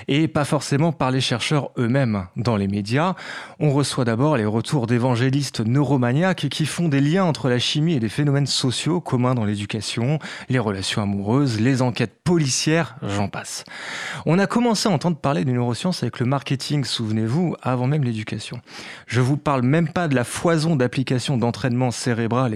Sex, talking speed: male, 175 wpm